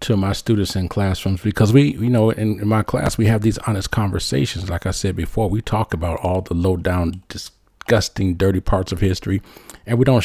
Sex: male